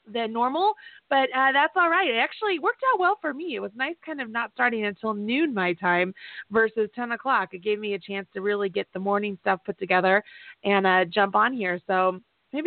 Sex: female